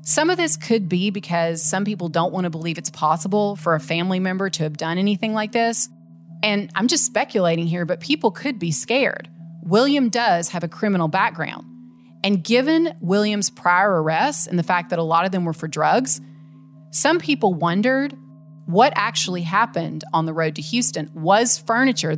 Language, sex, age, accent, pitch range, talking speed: English, female, 30-49, American, 160-215 Hz, 185 wpm